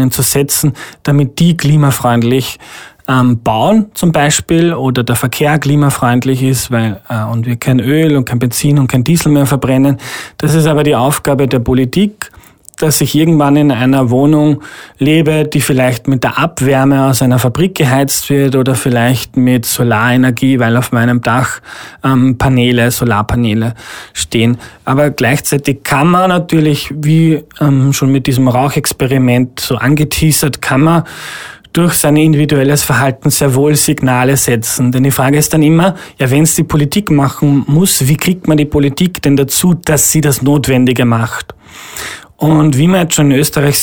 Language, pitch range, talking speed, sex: German, 130-155 Hz, 160 wpm, male